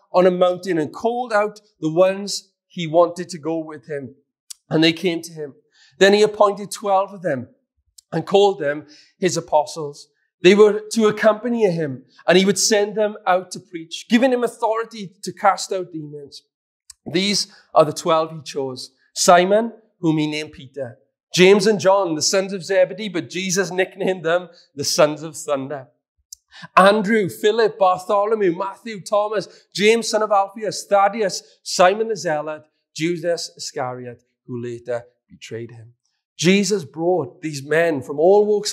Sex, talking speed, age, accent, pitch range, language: male, 160 wpm, 30-49, British, 150-200 Hz, English